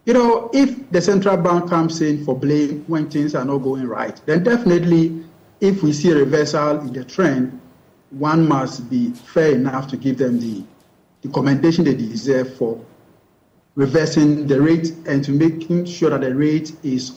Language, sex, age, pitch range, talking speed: English, male, 50-69, 140-170 Hz, 180 wpm